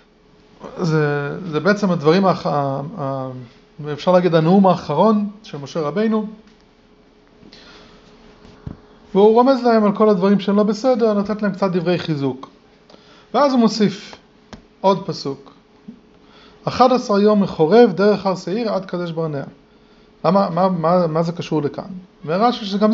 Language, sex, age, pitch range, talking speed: English, male, 30-49, 165-220 Hz, 125 wpm